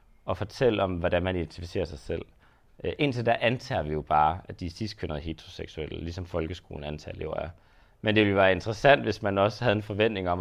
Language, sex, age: Danish, male, 30-49